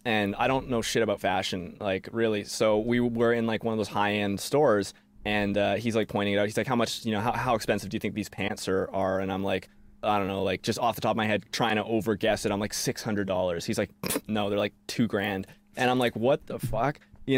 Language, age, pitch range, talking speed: English, 20-39, 105-130 Hz, 270 wpm